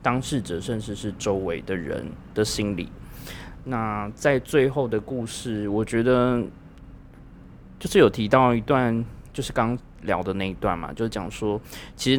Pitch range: 95-125 Hz